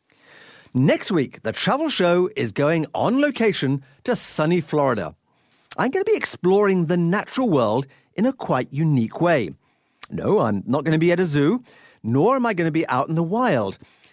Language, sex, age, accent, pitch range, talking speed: English, male, 50-69, British, 135-215 Hz, 185 wpm